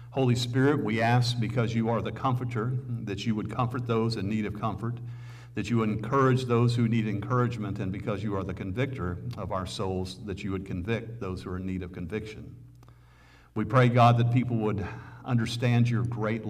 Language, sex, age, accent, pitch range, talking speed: English, male, 50-69, American, 95-120 Hz, 200 wpm